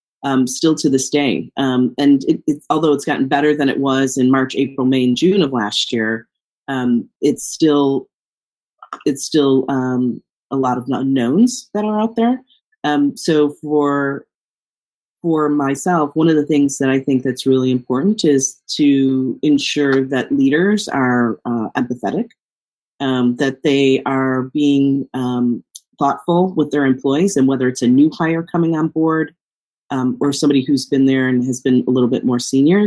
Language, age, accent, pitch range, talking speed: English, 30-49, American, 125-145 Hz, 170 wpm